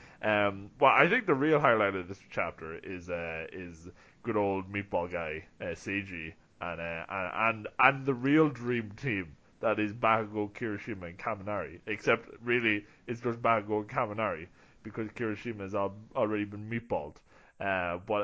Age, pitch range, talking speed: 20-39, 95-120 Hz, 160 wpm